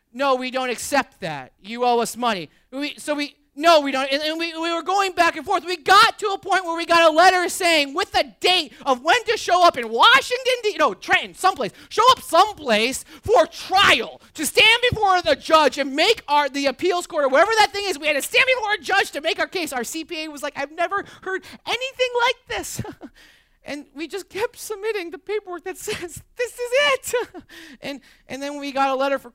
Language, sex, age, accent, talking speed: English, male, 30-49, American, 225 wpm